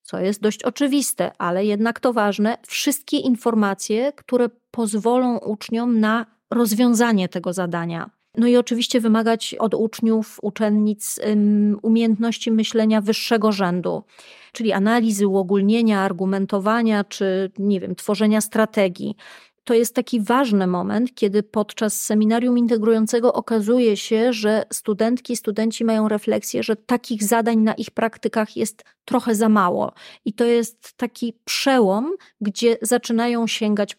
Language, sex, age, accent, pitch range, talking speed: Polish, female, 30-49, native, 205-235 Hz, 125 wpm